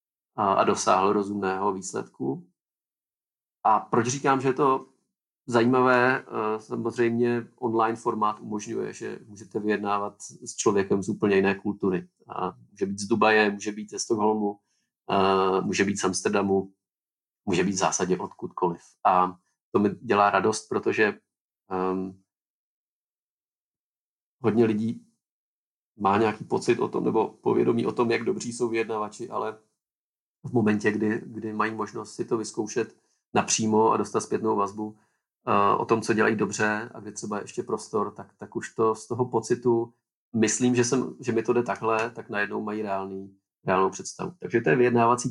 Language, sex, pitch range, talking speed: Czech, male, 100-115 Hz, 150 wpm